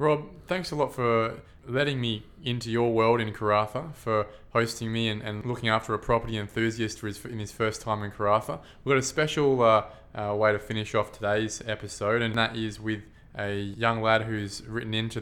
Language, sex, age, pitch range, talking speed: English, male, 20-39, 105-120 Hz, 205 wpm